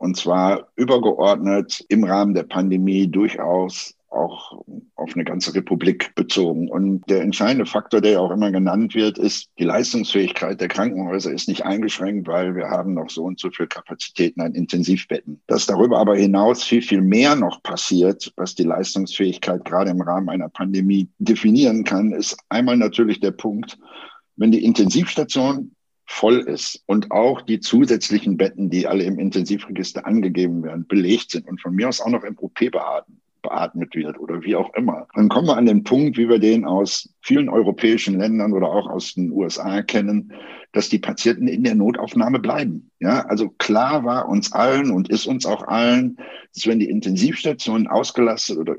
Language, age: German, 60-79